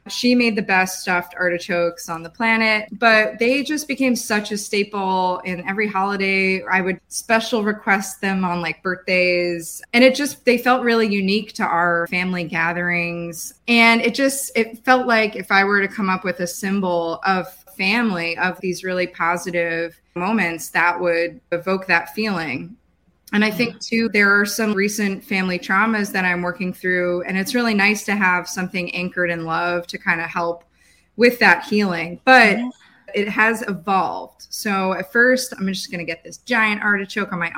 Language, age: English, 20-39